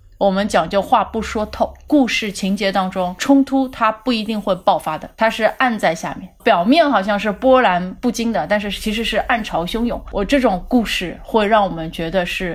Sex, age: female, 30-49